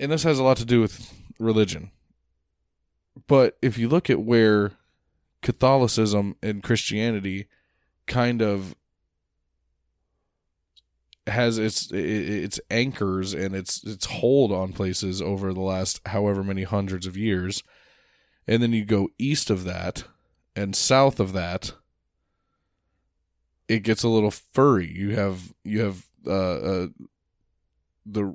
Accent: American